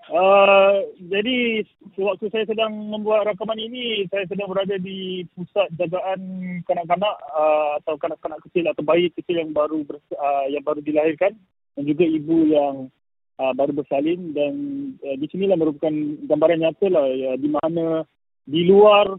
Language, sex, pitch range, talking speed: Malay, male, 160-200 Hz, 155 wpm